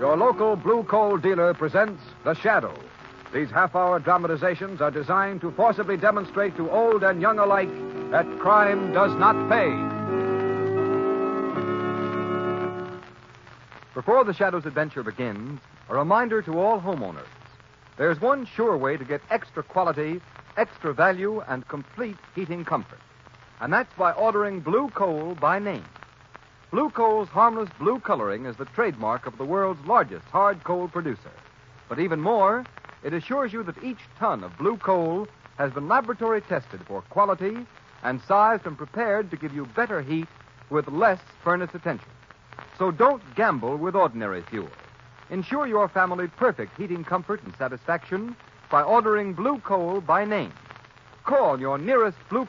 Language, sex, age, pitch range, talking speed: English, male, 60-79, 140-205 Hz, 145 wpm